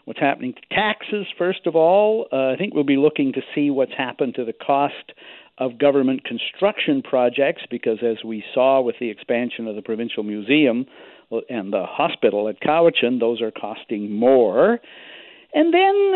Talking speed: 170 wpm